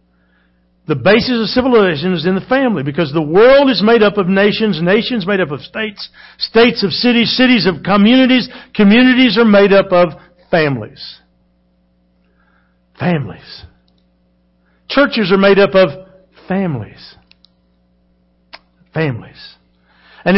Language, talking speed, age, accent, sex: English, 125 wpm, 60-79, American, male